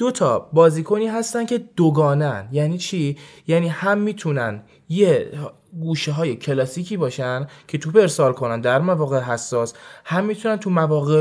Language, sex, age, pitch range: Persian, male, 20-39, 125-170 Hz